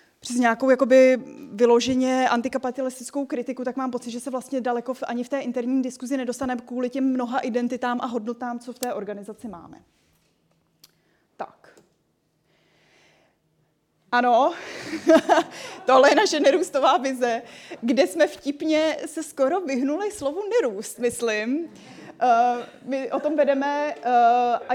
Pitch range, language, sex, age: 240-275 Hz, Czech, female, 20-39